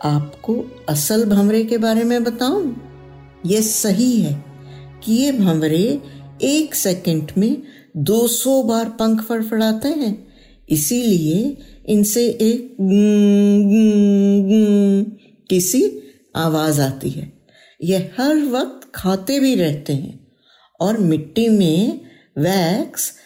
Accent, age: native, 60-79